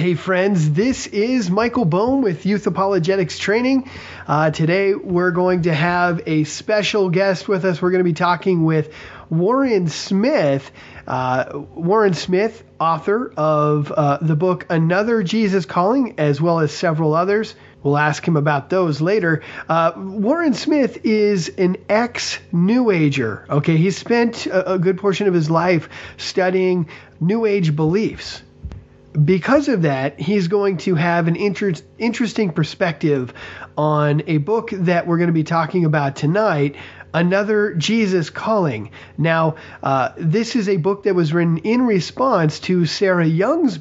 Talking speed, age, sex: 150 wpm, 30-49, male